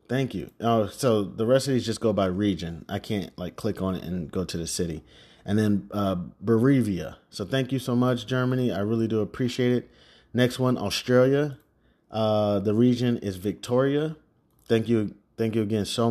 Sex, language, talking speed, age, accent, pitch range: male, English, 195 wpm, 30-49, American, 105-135 Hz